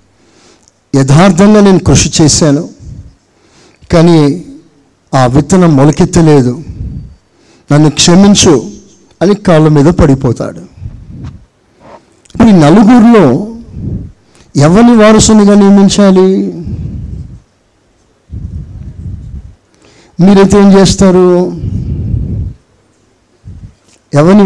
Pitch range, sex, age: 115-180 Hz, male, 60-79